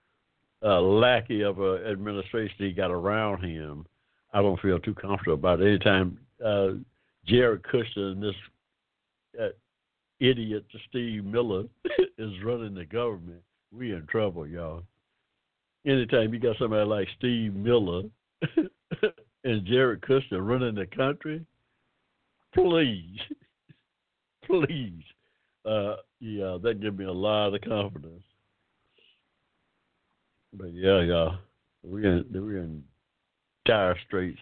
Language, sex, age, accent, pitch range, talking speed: English, male, 60-79, American, 85-105 Hz, 115 wpm